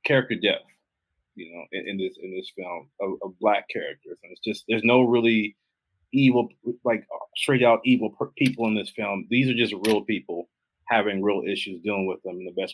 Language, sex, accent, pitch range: English, male, American, 100-125 Hz